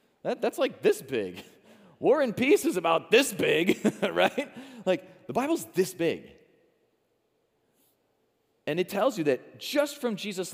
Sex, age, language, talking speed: male, 30-49, English, 140 wpm